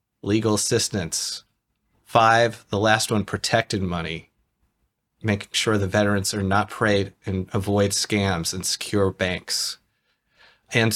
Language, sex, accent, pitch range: English, male, American, 100-125 Hz